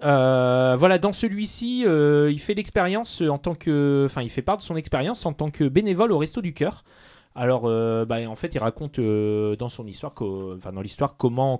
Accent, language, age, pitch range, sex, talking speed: French, French, 30-49, 100-140 Hz, male, 215 wpm